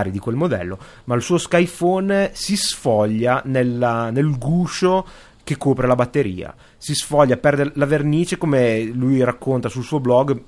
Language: Italian